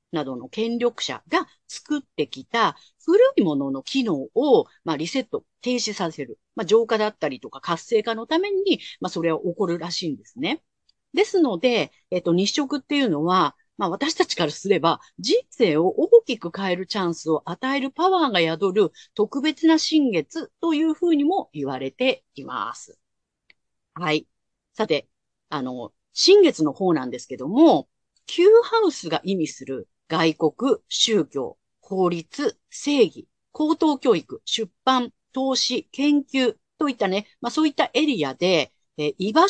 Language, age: Japanese, 40-59